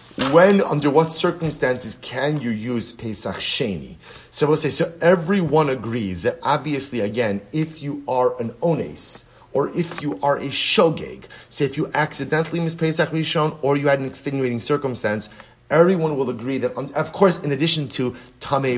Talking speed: 165 wpm